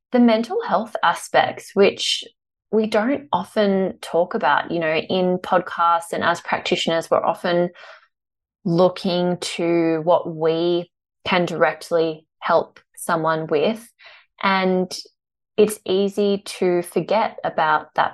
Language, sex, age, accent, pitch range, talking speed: English, female, 20-39, Australian, 165-200 Hz, 115 wpm